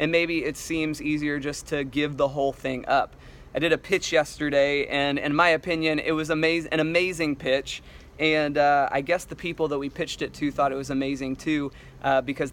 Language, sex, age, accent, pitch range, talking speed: English, male, 20-39, American, 145-170 Hz, 210 wpm